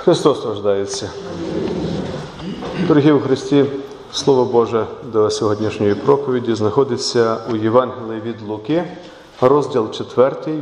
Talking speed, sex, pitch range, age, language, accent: 95 wpm, male, 130-205 Hz, 40-59, Ukrainian, native